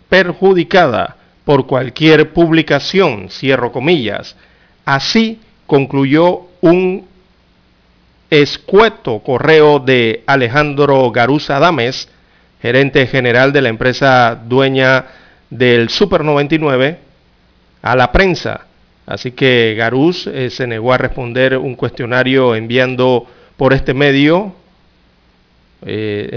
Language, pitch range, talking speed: Spanish, 120-145 Hz, 95 wpm